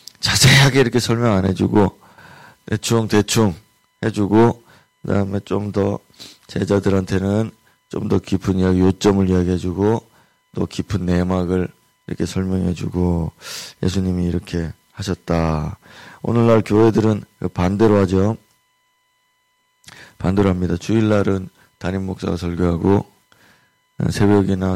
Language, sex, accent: Korean, male, native